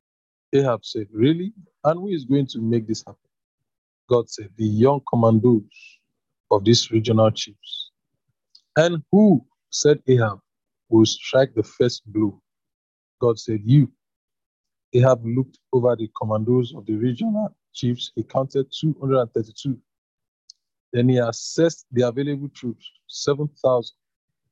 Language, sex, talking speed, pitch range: English, male, 125 wpm, 110-135 Hz